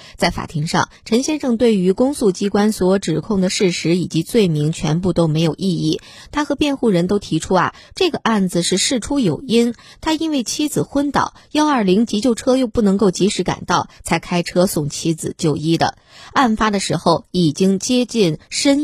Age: 20-39